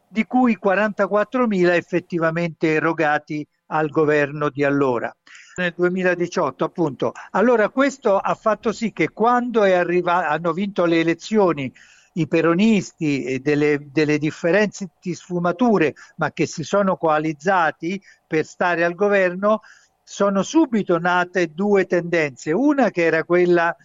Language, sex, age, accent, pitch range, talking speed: Italian, male, 50-69, native, 165-195 Hz, 130 wpm